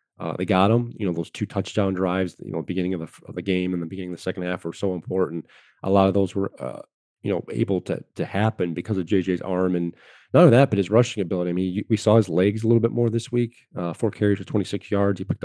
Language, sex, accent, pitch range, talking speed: English, male, American, 95-115 Hz, 285 wpm